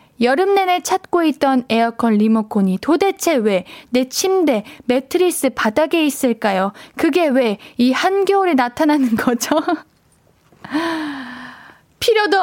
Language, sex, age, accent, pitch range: Korean, female, 20-39, native, 225-315 Hz